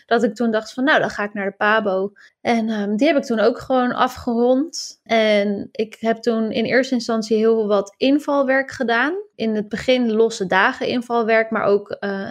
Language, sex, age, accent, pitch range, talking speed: Dutch, female, 20-39, Dutch, 210-245 Hz, 195 wpm